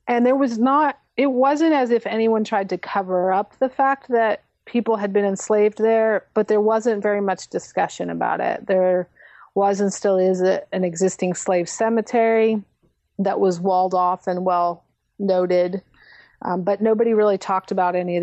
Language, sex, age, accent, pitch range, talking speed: English, female, 30-49, American, 185-225 Hz, 175 wpm